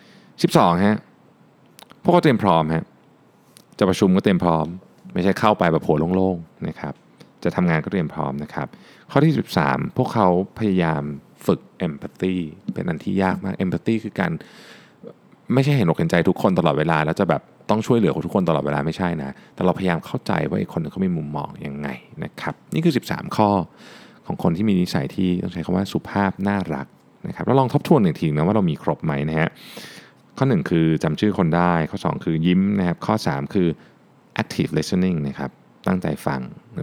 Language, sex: Thai, male